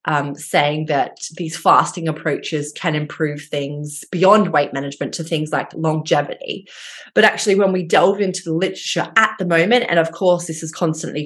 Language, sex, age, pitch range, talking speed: English, female, 20-39, 160-190 Hz, 175 wpm